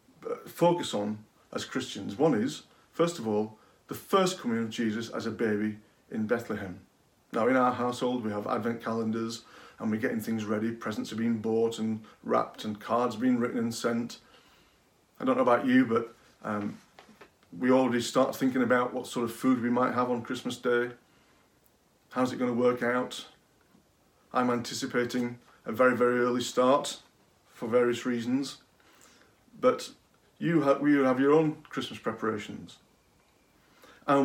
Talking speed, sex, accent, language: 160 wpm, male, British, English